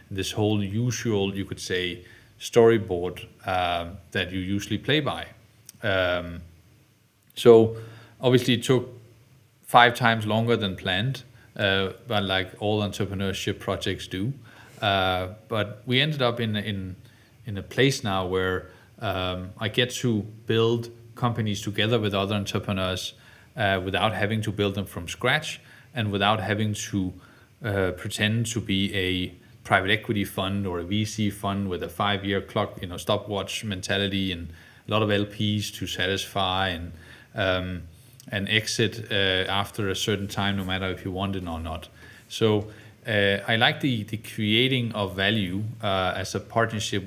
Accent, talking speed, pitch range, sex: Danish, 155 wpm, 95-115 Hz, male